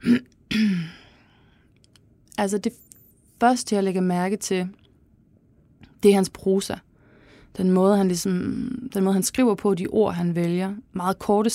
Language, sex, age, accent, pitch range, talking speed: Danish, female, 20-39, native, 170-215 Hz, 135 wpm